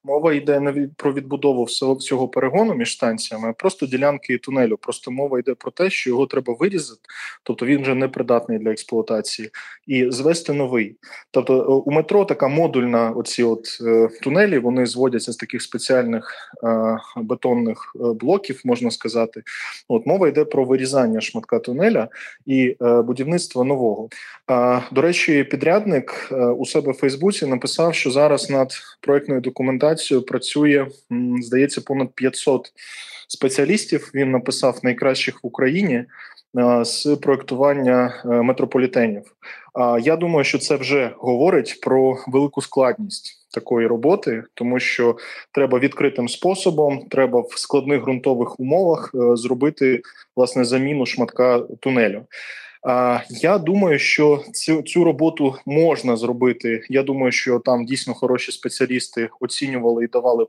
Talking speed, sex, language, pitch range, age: 130 wpm, male, Ukrainian, 120-145 Hz, 20-39